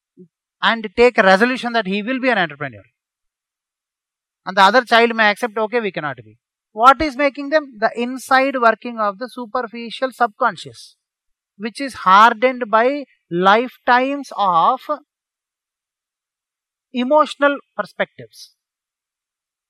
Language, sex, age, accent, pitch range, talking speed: English, male, 30-49, Indian, 185-255 Hz, 120 wpm